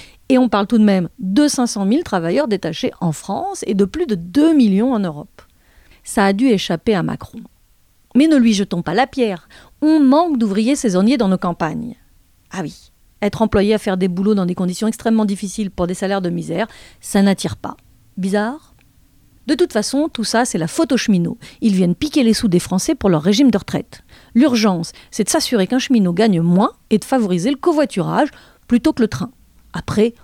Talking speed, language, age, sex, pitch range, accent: 205 wpm, French, 40-59, female, 185-250 Hz, French